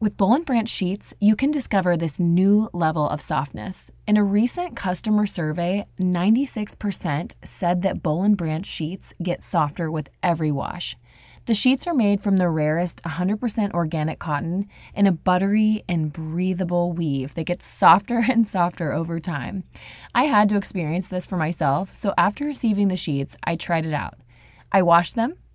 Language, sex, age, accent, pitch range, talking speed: English, female, 20-39, American, 155-200 Hz, 170 wpm